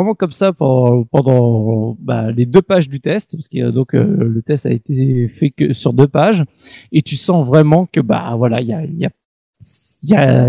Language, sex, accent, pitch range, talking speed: French, male, French, 135-185 Hz, 200 wpm